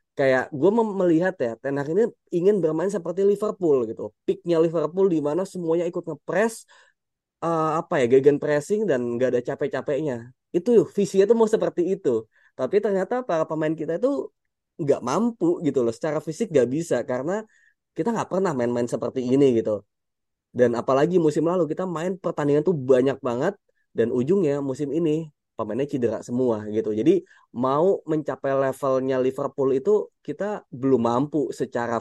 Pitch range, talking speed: 130-190 Hz, 155 wpm